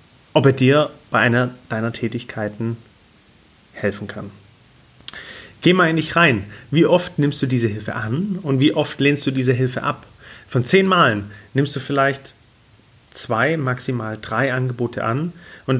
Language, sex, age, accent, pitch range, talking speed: German, male, 30-49, German, 115-150 Hz, 155 wpm